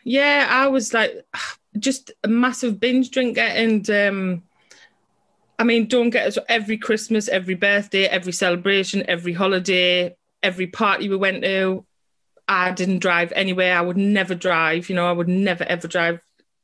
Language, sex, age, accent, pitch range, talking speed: English, female, 20-39, British, 175-205 Hz, 160 wpm